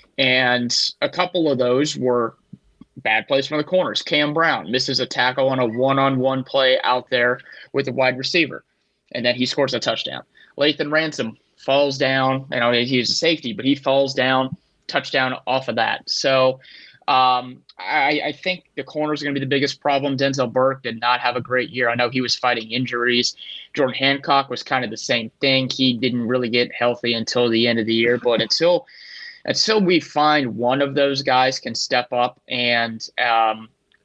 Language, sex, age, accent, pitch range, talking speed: English, male, 20-39, American, 120-140 Hz, 195 wpm